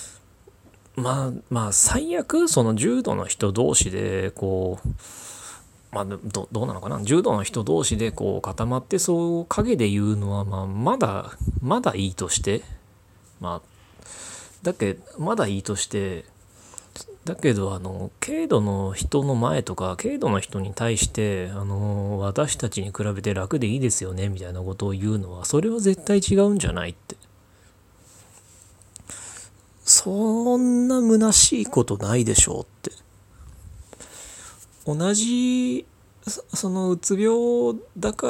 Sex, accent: male, native